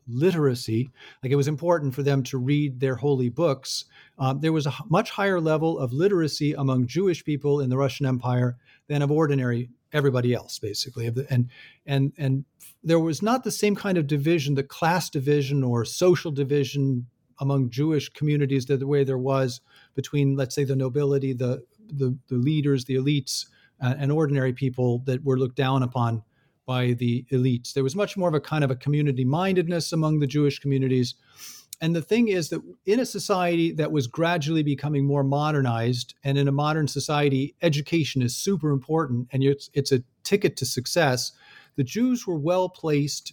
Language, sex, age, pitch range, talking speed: English, male, 40-59, 130-155 Hz, 180 wpm